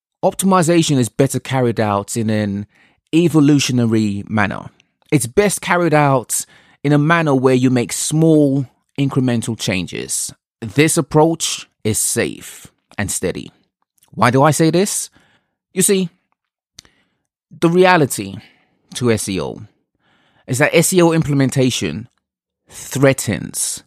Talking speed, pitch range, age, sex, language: 110 wpm, 110-155 Hz, 30-49, male, English